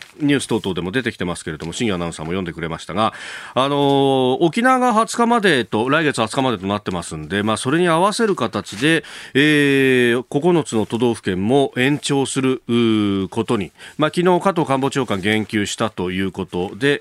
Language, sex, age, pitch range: Japanese, male, 40-59, 105-150 Hz